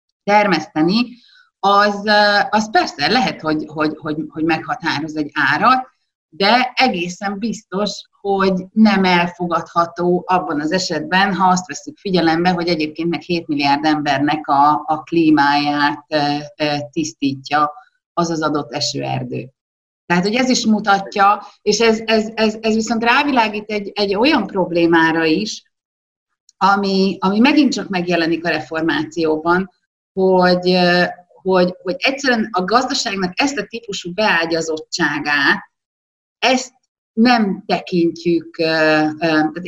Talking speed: 110 wpm